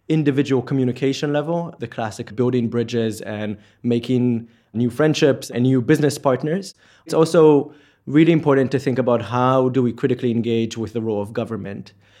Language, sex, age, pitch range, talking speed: English, male, 20-39, 115-135 Hz, 155 wpm